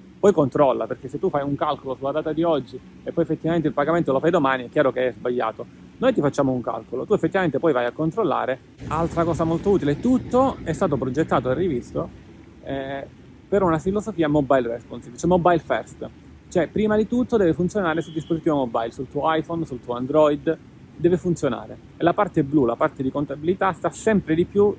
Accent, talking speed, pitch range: native, 205 wpm, 130-170 Hz